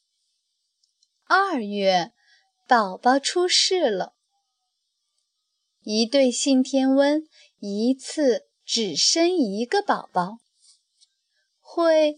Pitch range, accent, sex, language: 255-370 Hz, native, female, Chinese